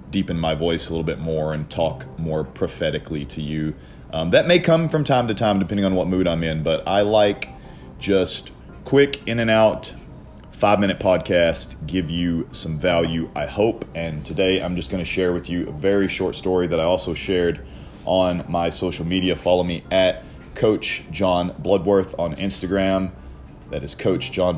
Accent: American